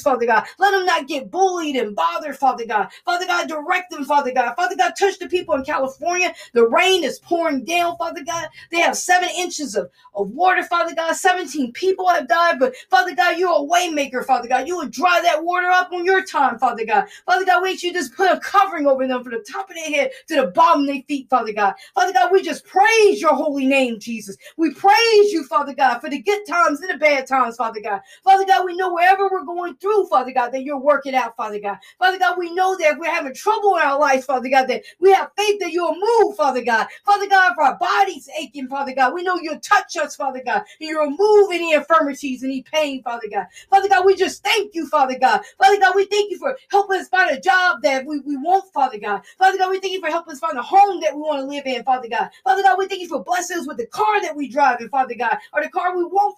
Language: English